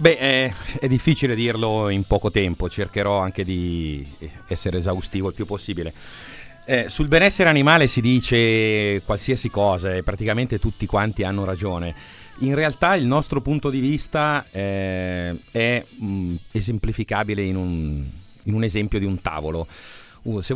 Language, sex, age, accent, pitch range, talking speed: Italian, male, 40-59, native, 90-120 Hz, 150 wpm